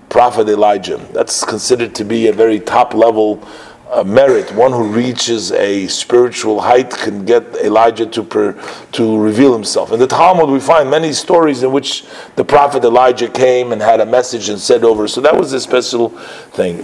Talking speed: 185 wpm